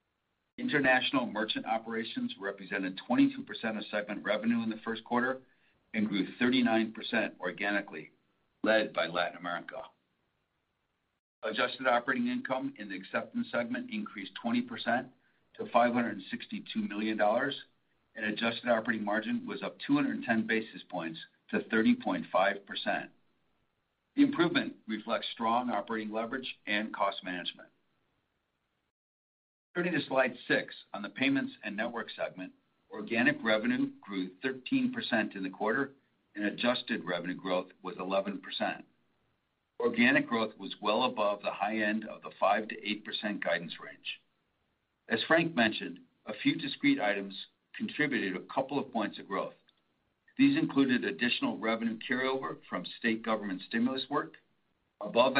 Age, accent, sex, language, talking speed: 50-69, American, male, English, 125 wpm